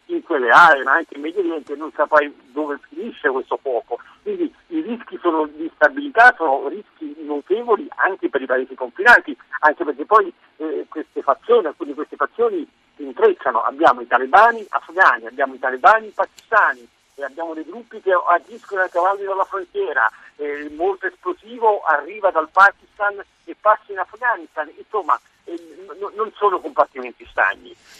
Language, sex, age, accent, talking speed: Italian, male, 50-69, native, 160 wpm